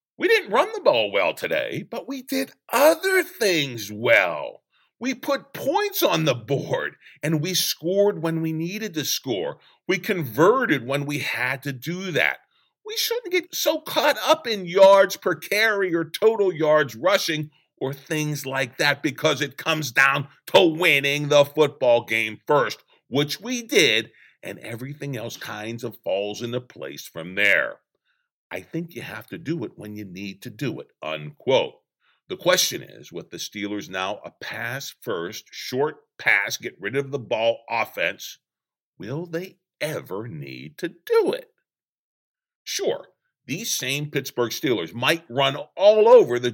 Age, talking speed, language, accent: 50-69, 160 wpm, English, American